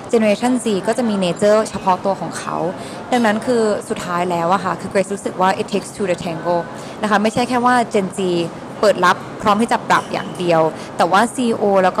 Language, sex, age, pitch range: Thai, female, 20-39, 180-220 Hz